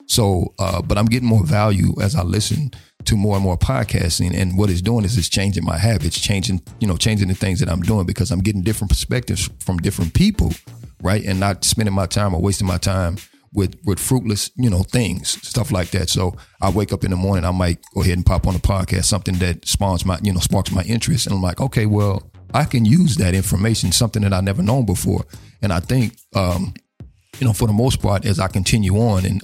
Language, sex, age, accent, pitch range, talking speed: English, male, 40-59, American, 95-110 Hz, 235 wpm